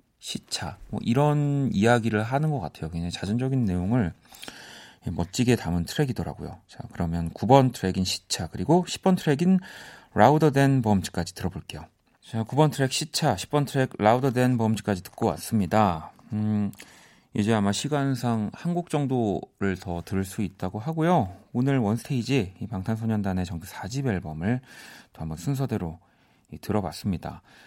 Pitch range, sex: 95-130 Hz, male